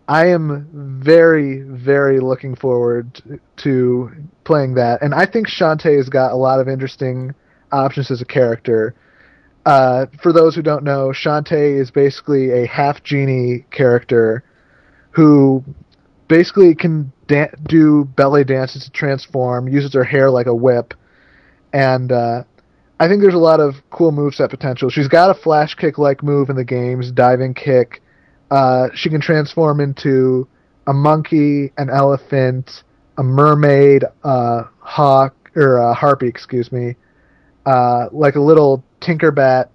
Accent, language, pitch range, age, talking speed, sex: American, English, 125-145 Hz, 30-49, 140 wpm, male